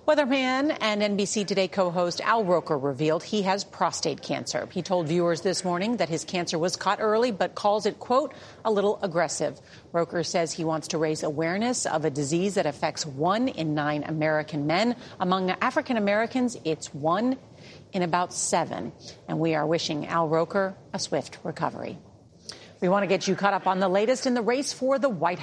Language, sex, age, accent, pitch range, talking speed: English, female, 40-59, American, 165-220 Hz, 190 wpm